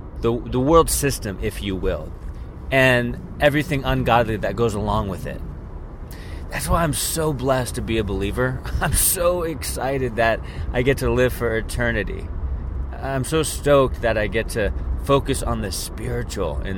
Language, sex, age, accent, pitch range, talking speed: English, male, 30-49, American, 85-130 Hz, 165 wpm